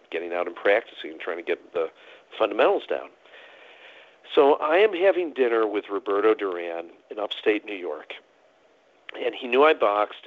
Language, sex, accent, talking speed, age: English, male, American, 165 wpm, 50-69